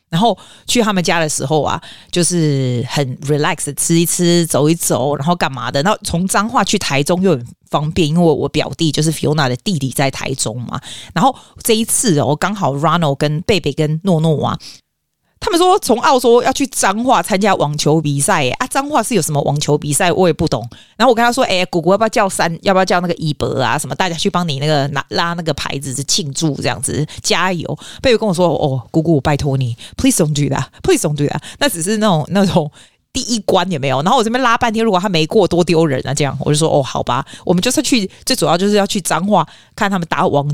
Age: 30-49